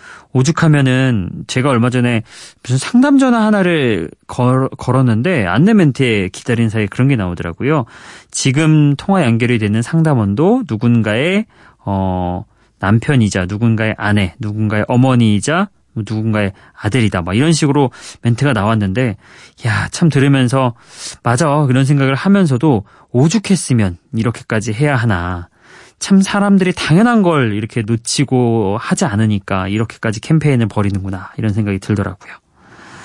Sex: male